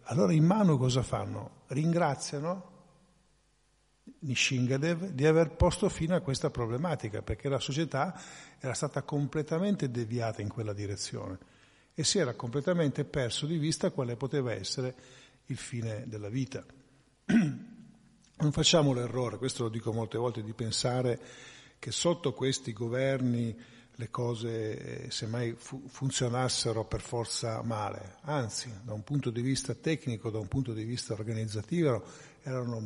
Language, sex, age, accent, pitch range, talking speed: Italian, male, 50-69, native, 115-145 Hz, 135 wpm